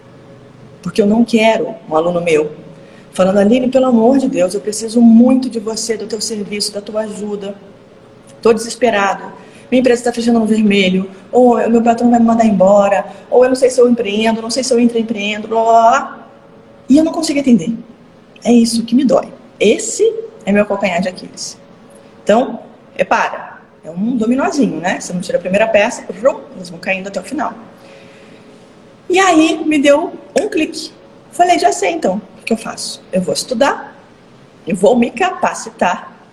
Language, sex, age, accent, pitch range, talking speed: Portuguese, female, 20-39, Brazilian, 200-245 Hz, 180 wpm